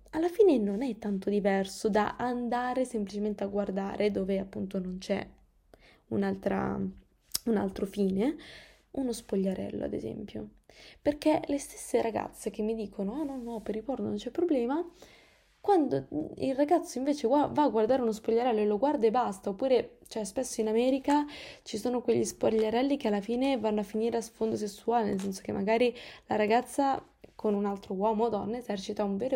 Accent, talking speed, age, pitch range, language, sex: native, 175 wpm, 20-39, 205-265 Hz, Italian, female